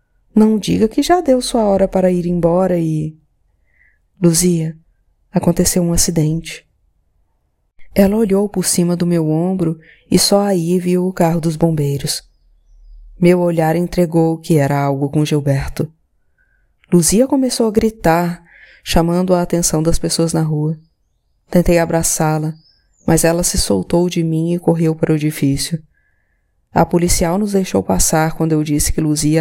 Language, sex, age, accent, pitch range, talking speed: Portuguese, female, 20-39, Brazilian, 155-185 Hz, 145 wpm